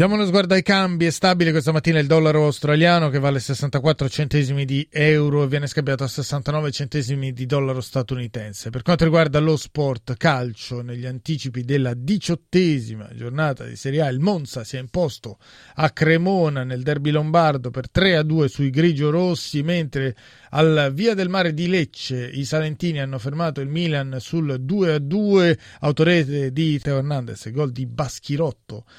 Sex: male